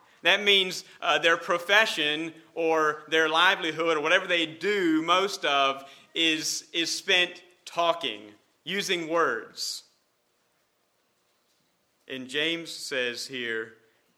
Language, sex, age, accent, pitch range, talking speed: English, male, 40-59, American, 150-200 Hz, 100 wpm